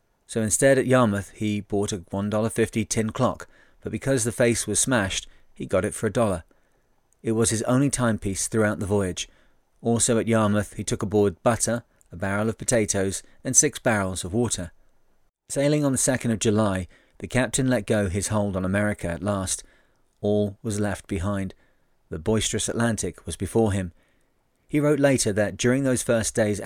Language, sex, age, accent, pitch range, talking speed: English, male, 30-49, British, 100-120 Hz, 180 wpm